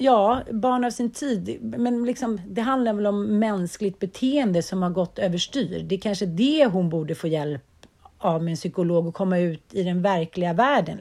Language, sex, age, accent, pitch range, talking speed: Swedish, female, 40-59, native, 185-255 Hz, 190 wpm